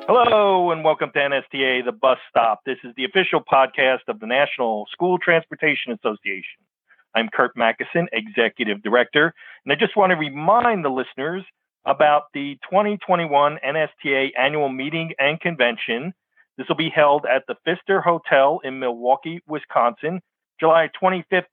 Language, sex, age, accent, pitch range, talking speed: English, male, 50-69, American, 135-175 Hz, 150 wpm